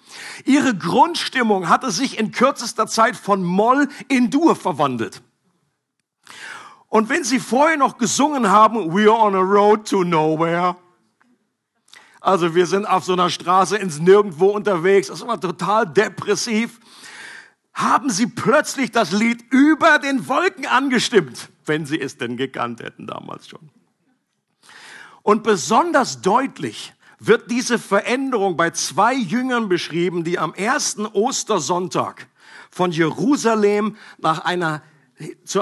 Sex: male